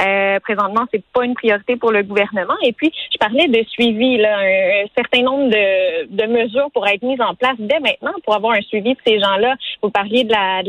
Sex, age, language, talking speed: female, 20-39, French, 235 wpm